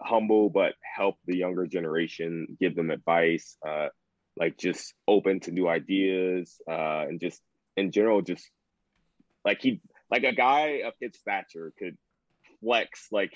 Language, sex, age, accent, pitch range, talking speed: English, male, 20-39, American, 85-105 Hz, 150 wpm